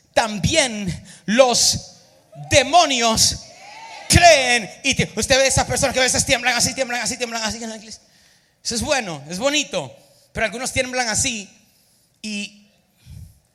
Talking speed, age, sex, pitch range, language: 140 wpm, 40-59, male, 195-265 Hz, Spanish